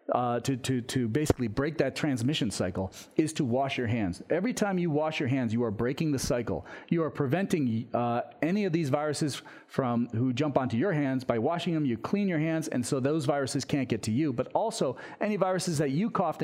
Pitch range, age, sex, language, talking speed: 125-160 Hz, 40-59, male, English, 220 wpm